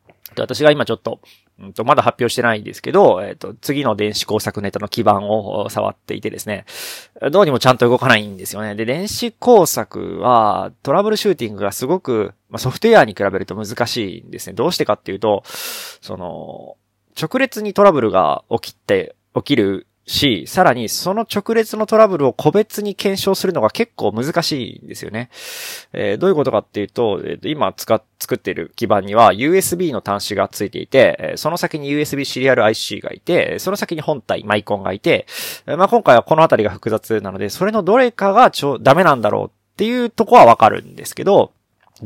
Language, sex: Japanese, male